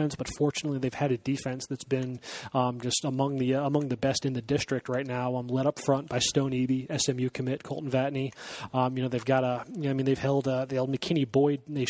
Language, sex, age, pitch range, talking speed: English, male, 20-39, 130-150 Hz, 240 wpm